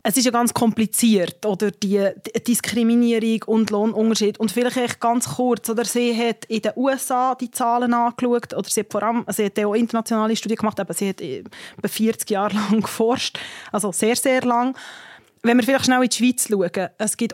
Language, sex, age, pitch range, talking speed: German, female, 20-39, 210-245 Hz, 190 wpm